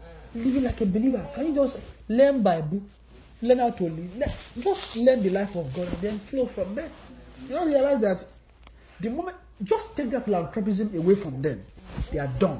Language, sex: English, male